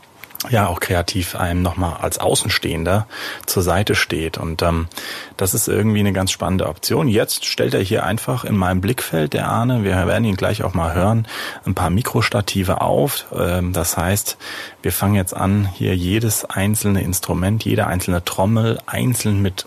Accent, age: German, 30-49